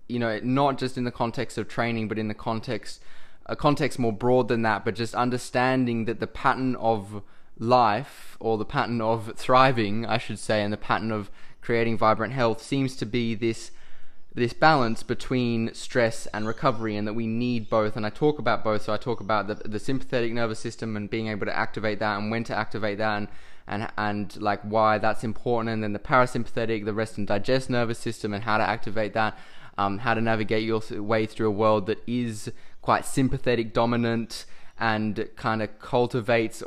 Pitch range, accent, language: 105-120 Hz, Australian, English